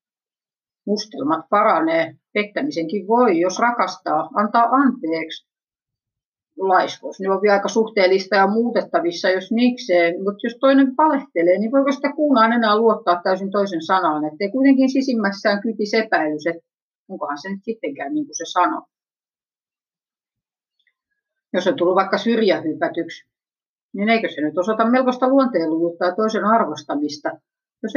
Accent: native